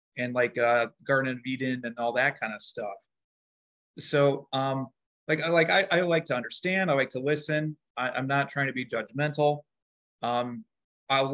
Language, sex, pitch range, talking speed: English, male, 125-155 Hz, 180 wpm